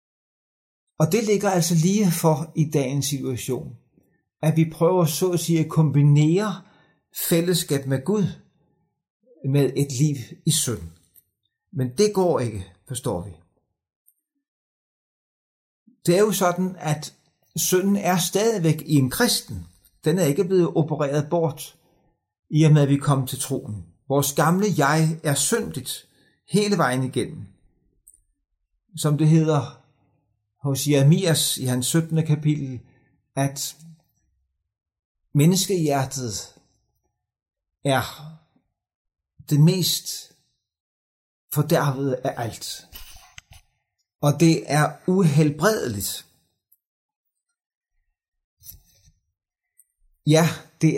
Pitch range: 125-170 Hz